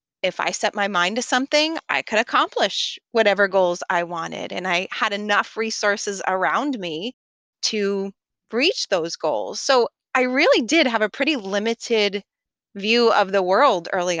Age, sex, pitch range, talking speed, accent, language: 30-49, female, 195-270 Hz, 160 wpm, American, English